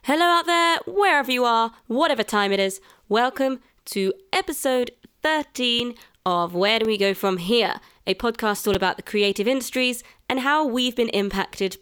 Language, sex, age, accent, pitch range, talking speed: English, female, 20-39, British, 180-245 Hz, 170 wpm